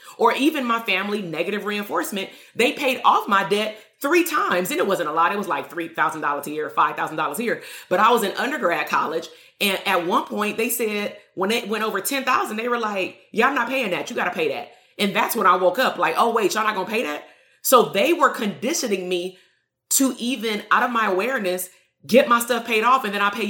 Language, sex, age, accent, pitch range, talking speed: English, female, 30-49, American, 185-245 Hz, 235 wpm